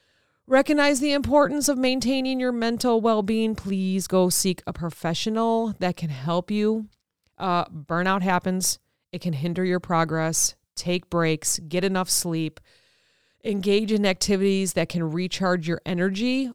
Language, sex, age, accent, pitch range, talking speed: English, female, 30-49, American, 170-210 Hz, 140 wpm